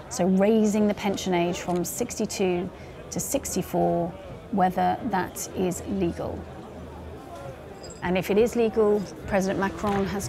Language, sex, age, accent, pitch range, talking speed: English, female, 30-49, British, 180-210 Hz, 120 wpm